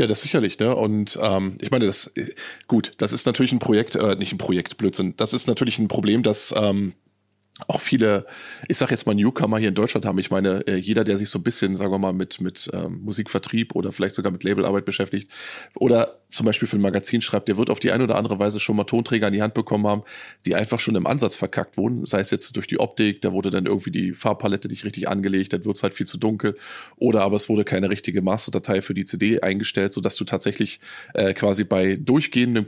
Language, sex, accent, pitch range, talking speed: German, male, German, 100-120 Hz, 235 wpm